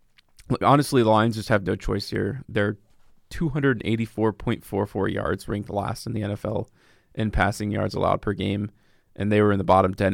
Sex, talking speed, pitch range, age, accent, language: male, 170 wpm, 105-115 Hz, 20-39, American, English